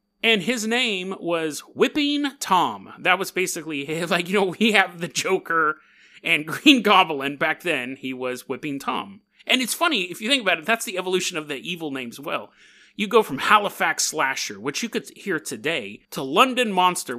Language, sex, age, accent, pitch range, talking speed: English, male, 30-49, American, 150-215 Hz, 195 wpm